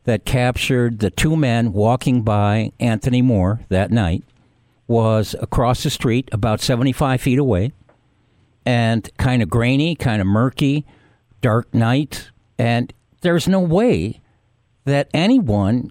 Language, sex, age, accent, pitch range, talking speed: English, male, 60-79, American, 110-140 Hz, 130 wpm